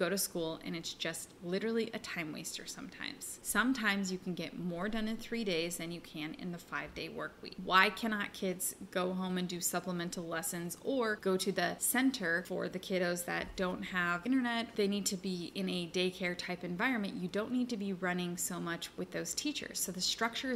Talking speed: 210 wpm